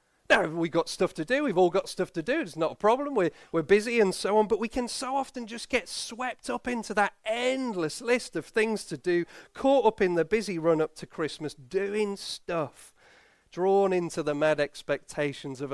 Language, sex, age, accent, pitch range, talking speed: English, male, 40-59, British, 155-215 Hz, 210 wpm